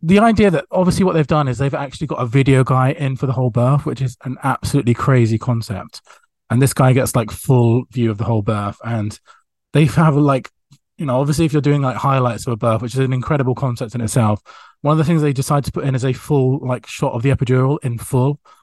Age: 20-39